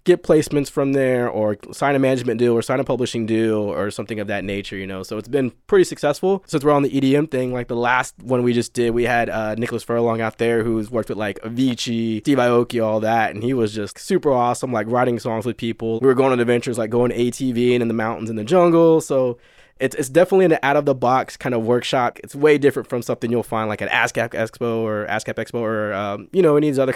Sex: male